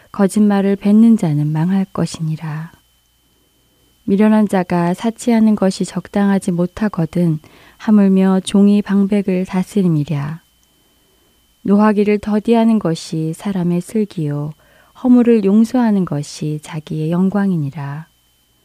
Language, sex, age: Korean, female, 20-39